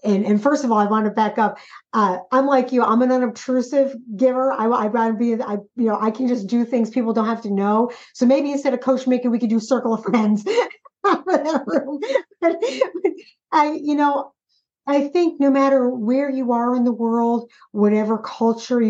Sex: female